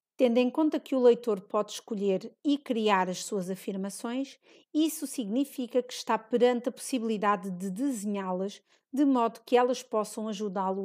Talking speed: 155 wpm